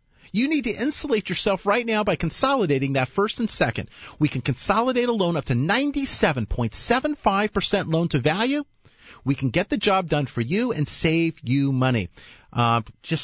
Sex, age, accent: male, 40-59, American